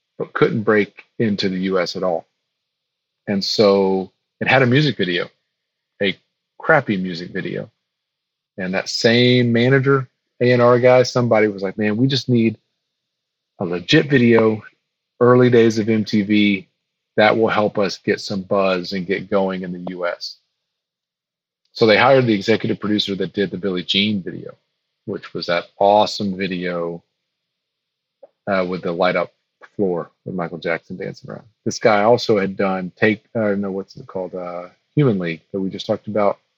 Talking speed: 165 wpm